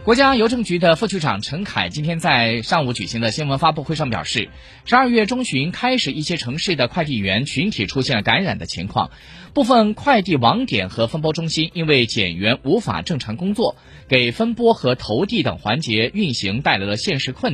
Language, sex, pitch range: Chinese, male, 115-175 Hz